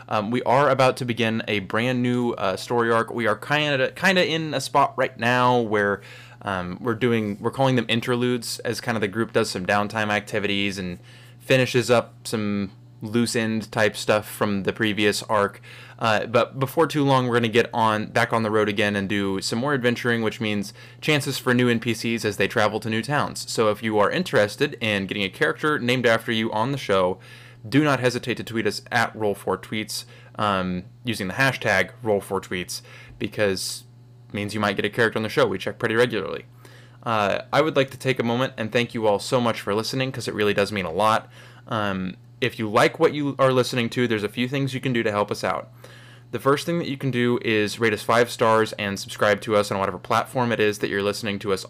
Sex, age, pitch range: male, 20-39, 105-125 Hz